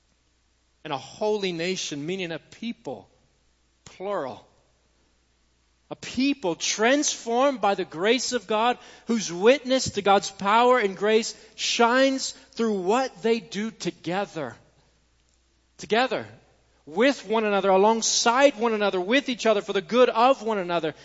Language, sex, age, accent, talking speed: English, male, 40-59, American, 130 wpm